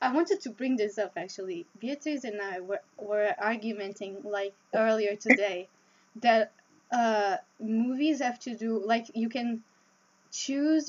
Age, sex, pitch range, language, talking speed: 10-29, female, 205-255 Hz, English, 145 wpm